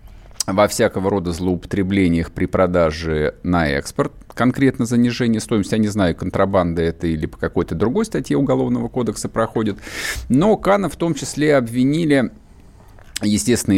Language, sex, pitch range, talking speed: Russian, male, 85-115 Hz, 135 wpm